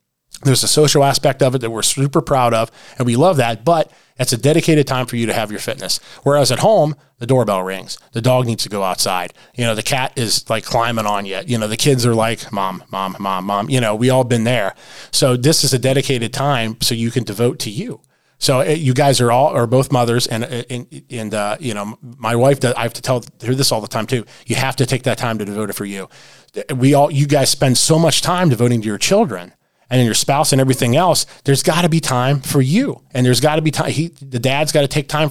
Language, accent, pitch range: English, American, 120-150 Hz